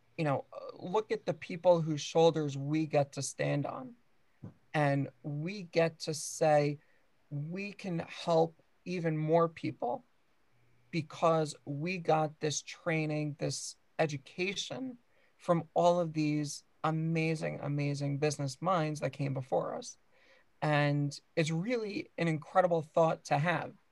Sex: male